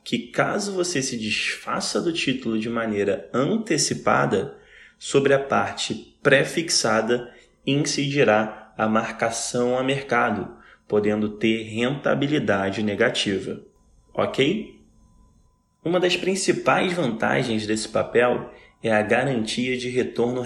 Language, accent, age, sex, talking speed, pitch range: Portuguese, Brazilian, 20-39, male, 105 wpm, 110-135 Hz